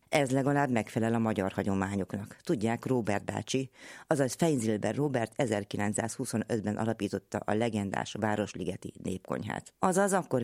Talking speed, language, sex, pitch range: 115 wpm, Hungarian, female, 100-130 Hz